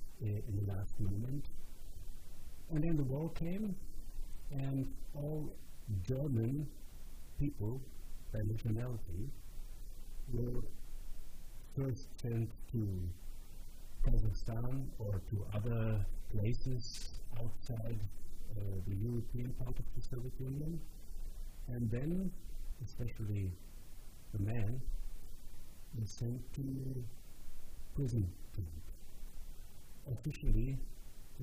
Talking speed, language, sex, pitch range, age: 90 wpm, English, male, 100-125 Hz, 50-69